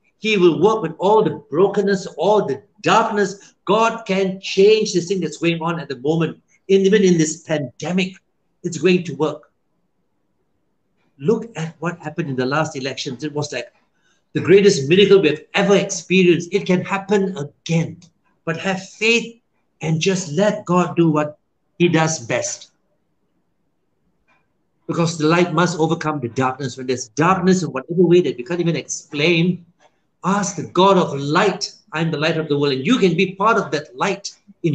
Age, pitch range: 60-79, 155-195 Hz